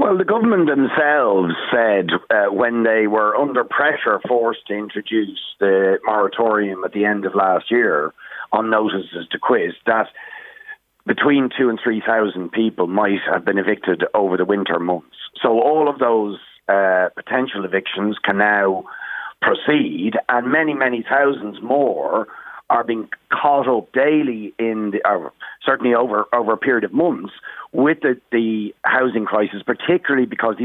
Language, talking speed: English, 155 wpm